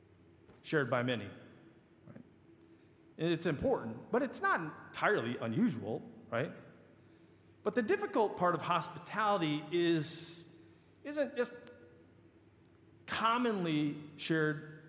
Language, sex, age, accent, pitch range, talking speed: English, male, 40-59, American, 155-215 Hz, 90 wpm